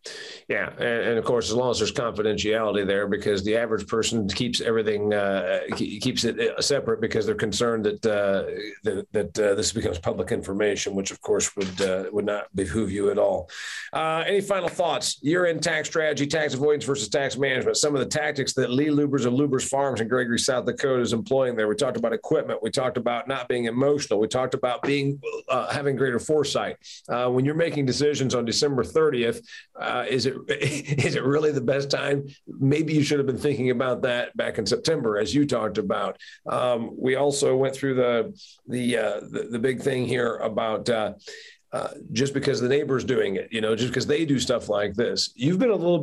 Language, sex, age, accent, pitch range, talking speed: English, male, 40-59, American, 120-150 Hz, 210 wpm